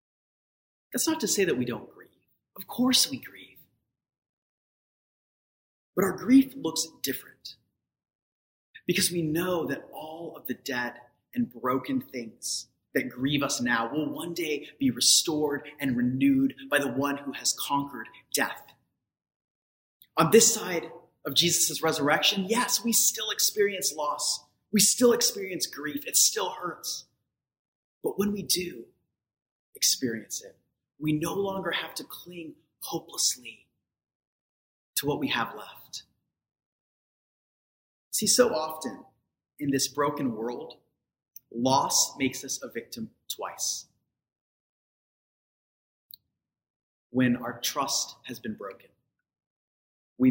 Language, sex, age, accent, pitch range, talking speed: English, male, 30-49, American, 130-195 Hz, 120 wpm